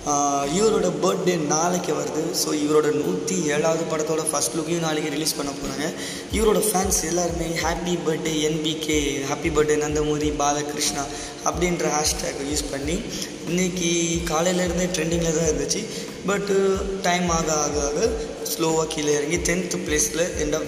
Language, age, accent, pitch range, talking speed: Tamil, 20-39, native, 150-175 Hz, 135 wpm